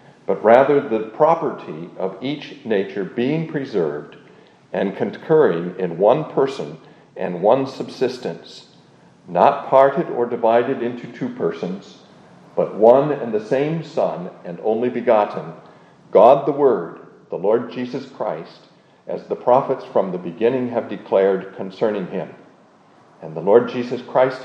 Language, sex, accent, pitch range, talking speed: English, male, American, 105-140 Hz, 135 wpm